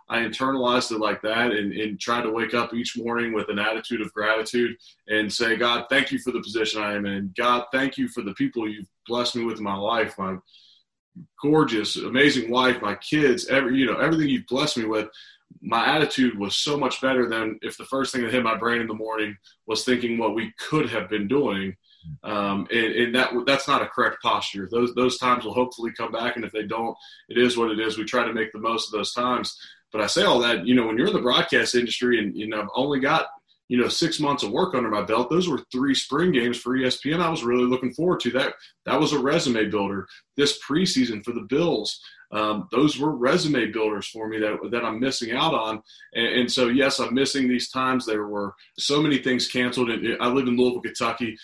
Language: English